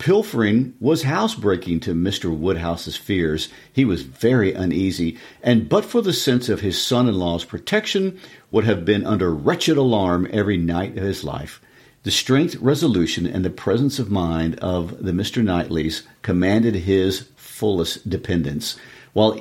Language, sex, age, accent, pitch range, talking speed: English, male, 50-69, American, 85-125 Hz, 150 wpm